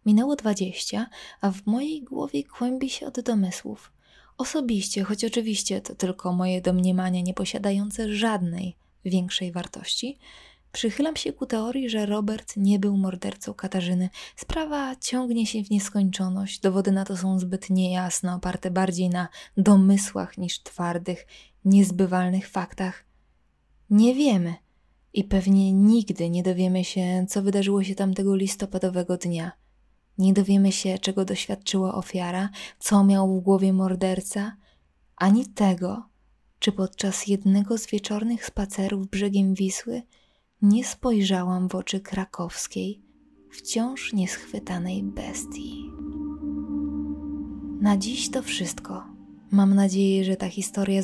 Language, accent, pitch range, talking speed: Polish, native, 185-210 Hz, 120 wpm